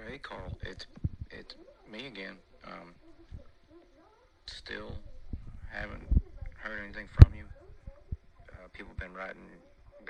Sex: male